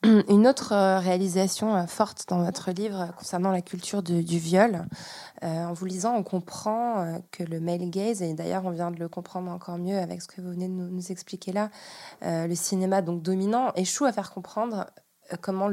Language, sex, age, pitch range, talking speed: French, female, 20-39, 180-200 Hz, 200 wpm